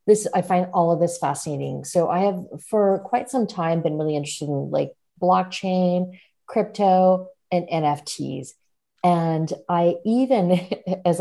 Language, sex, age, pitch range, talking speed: English, female, 40-59, 165-200 Hz, 145 wpm